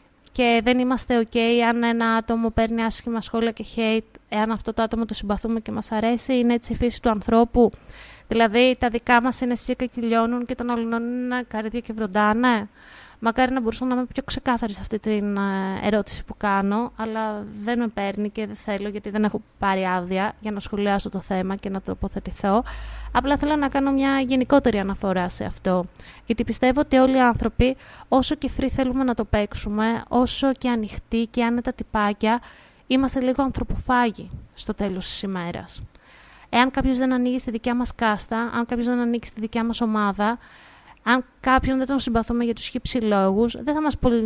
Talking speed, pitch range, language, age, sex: 185 wpm, 210-250 Hz, Greek, 20-39, female